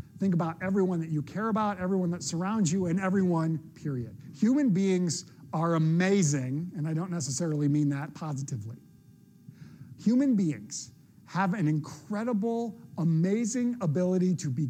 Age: 50-69